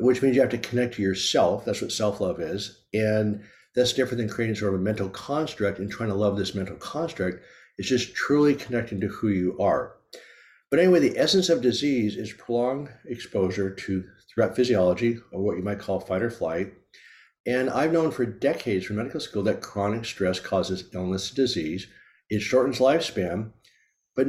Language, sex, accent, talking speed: English, male, American, 185 wpm